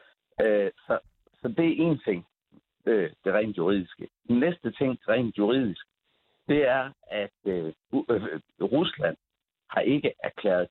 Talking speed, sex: 125 wpm, male